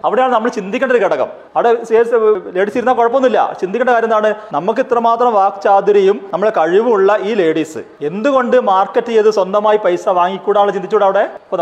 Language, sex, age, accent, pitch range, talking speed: Malayalam, male, 30-49, native, 195-240 Hz, 135 wpm